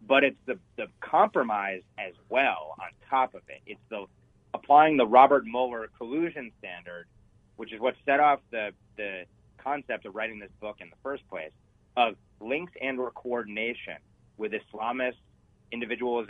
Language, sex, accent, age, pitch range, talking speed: English, male, American, 30-49, 100-125 Hz, 160 wpm